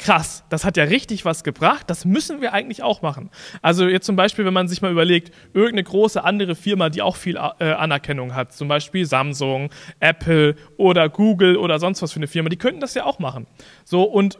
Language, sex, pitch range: German, male, 160-200 Hz